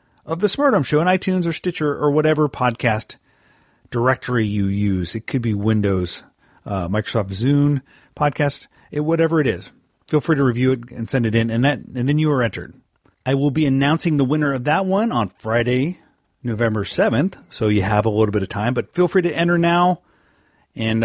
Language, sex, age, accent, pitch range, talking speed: English, male, 40-59, American, 110-165 Hz, 200 wpm